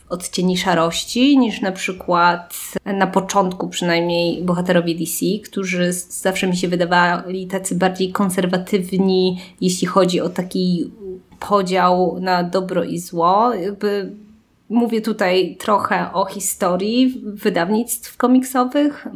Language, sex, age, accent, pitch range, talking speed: Polish, female, 20-39, native, 180-210 Hz, 105 wpm